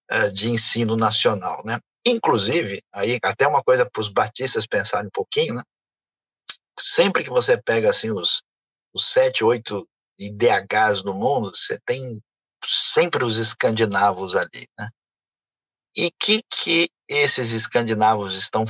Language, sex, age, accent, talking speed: Portuguese, male, 50-69, Brazilian, 130 wpm